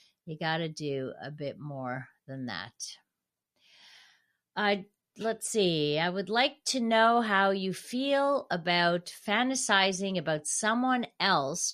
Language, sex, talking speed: English, female, 130 wpm